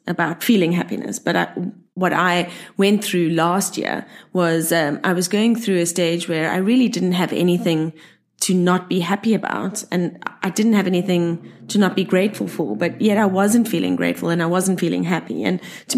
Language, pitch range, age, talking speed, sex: English, 180-230 Hz, 30-49, 195 wpm, female